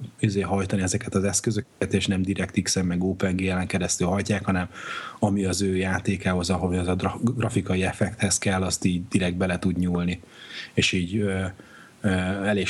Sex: male